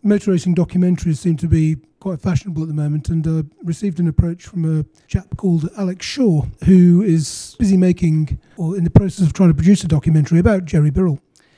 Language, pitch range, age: English, 155-180 Hz, 30-49